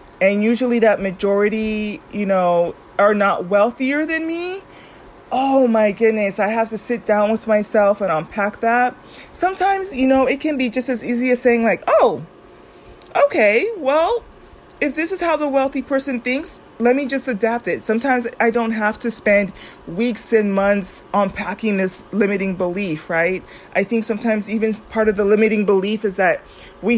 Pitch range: 200-255 Hz